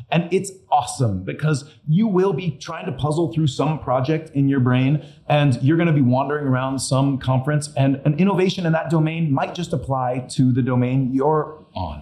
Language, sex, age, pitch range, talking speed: English, male, 30-49, 125-155 Hz, 195 wpm